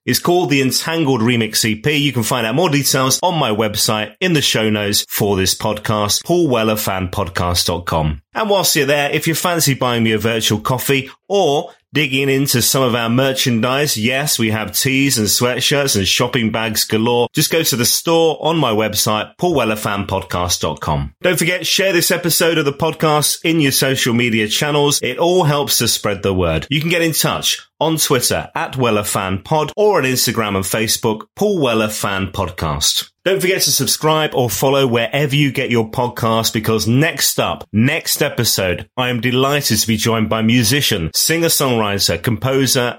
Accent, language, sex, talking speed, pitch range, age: British, English, male, 175 wpm, 110-145 Hz, 30-49